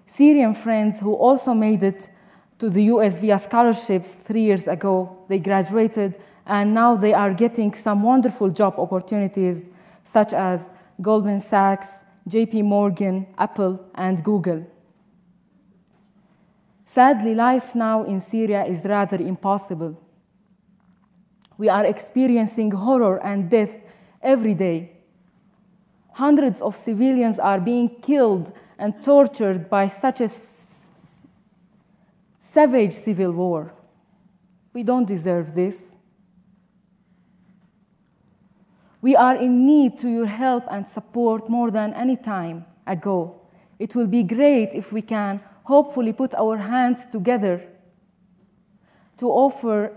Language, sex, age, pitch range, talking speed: English, female, 20-39, 190-225 Hz, 115 wpm